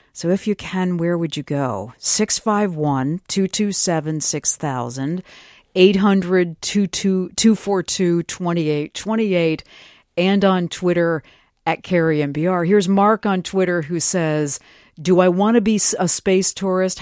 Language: English